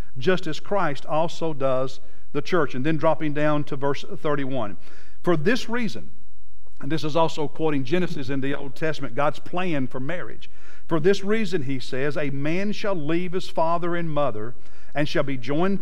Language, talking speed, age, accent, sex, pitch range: English, 180 wpm, 50-69, American, male, 140-185 Hz